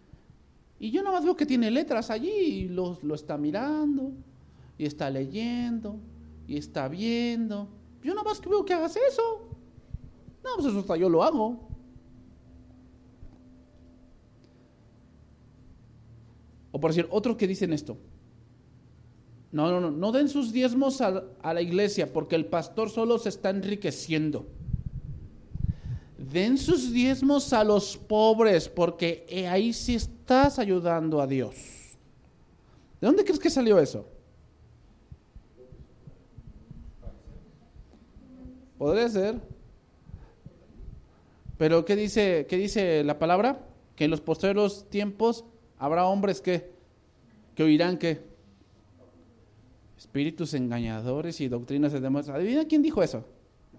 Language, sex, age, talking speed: English, male, 50-69, 120 wpm